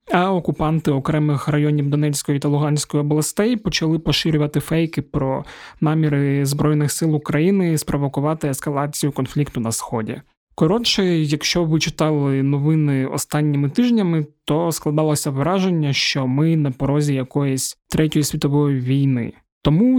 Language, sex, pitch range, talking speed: Ukrainian, male, 145-170 Hz, 120 wpm